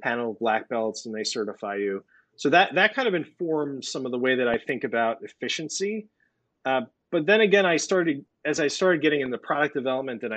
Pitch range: 115-150 Hz